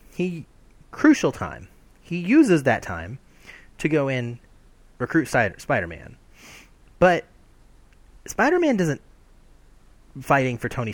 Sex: male